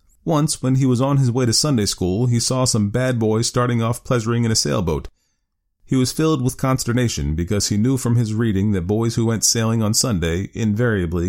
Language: English